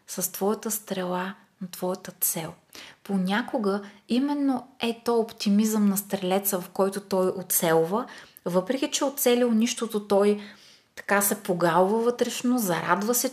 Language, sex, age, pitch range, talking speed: Bulgarian, female, 20-39, 190-230 Hz, 125 wpm